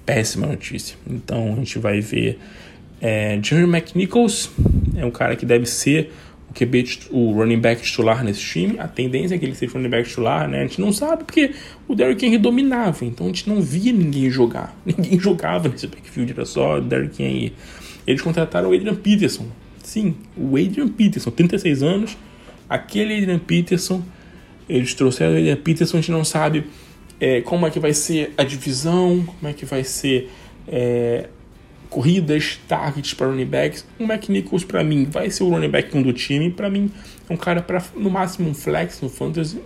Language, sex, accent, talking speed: Portuguese, male, Brazilian, 195 wpm